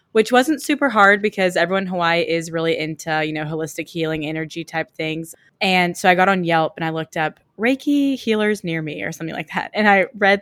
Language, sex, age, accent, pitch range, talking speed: English, female, 20-39, American, 165-195 Hz, 225 wpm